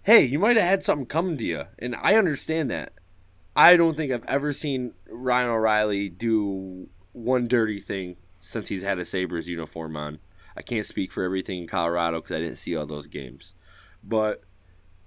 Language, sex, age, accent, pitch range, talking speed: English, male, 20-39, American, 95-155 Hz, 185 wpm